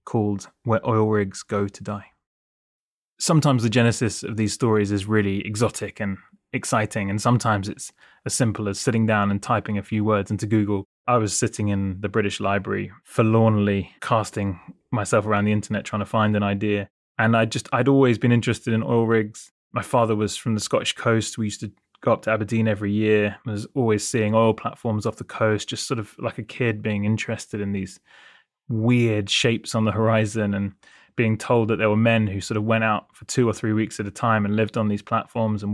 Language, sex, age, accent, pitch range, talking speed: English, male, 20-39, British, 105-115 Hz, 215 wpm